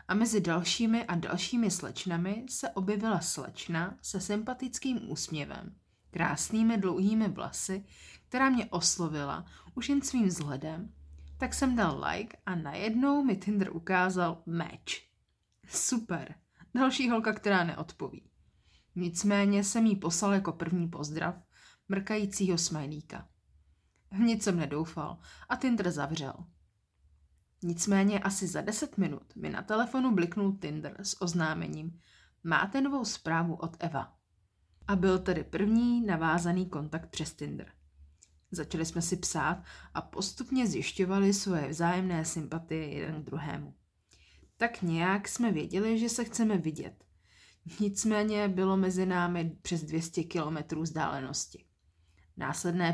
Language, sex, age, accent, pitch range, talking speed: Czech, female, 30-49, native, 155-205 Hz, 120 wpm